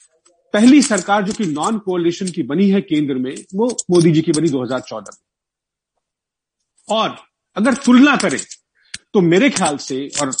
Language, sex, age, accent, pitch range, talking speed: Hindi, male, 40-59, native, 155-230 Hz, 155 wpm